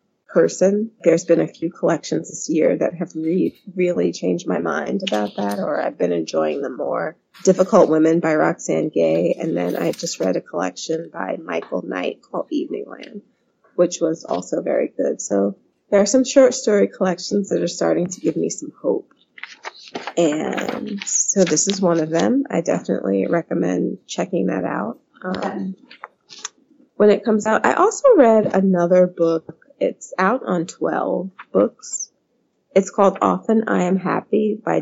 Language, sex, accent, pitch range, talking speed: English, female, American, 165-220 Hz, 165 wpm